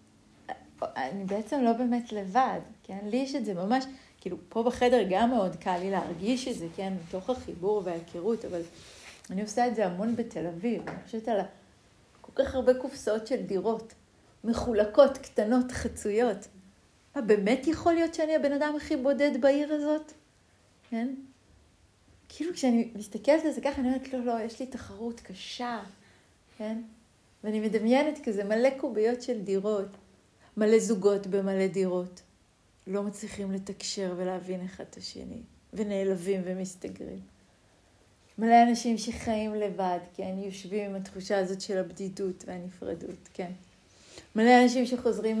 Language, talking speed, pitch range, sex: Hebrew, 145 wpm, 190-250 Hz, female